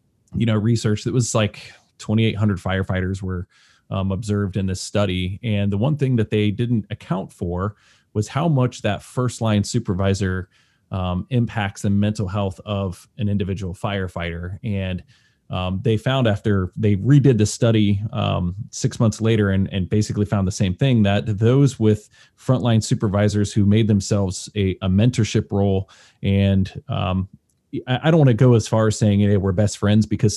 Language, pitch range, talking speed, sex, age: English, 95-115 Hz, 170 wpm, male, 20-39